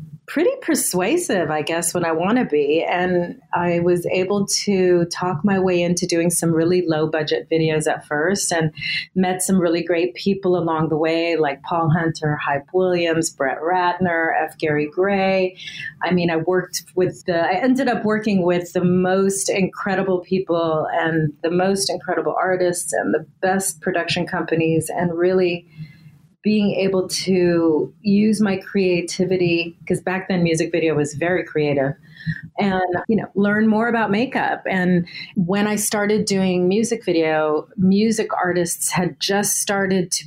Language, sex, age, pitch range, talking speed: English, female, 30-49, 165-185 Hz, 160 wpm